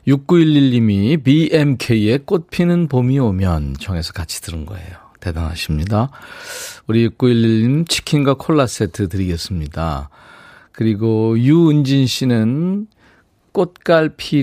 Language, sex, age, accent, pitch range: Korean, male, 40-59, native, 95-145 Hz